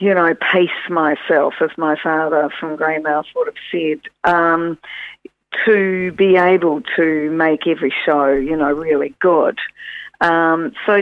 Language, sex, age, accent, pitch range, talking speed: English, female, 50-69, Australian, 155-190 Hz, 145 wpm